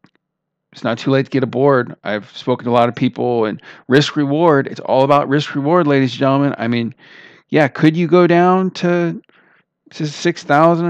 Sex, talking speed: male, 195 wpm